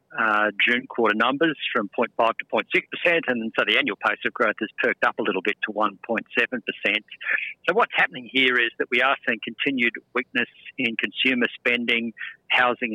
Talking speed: 175 wpm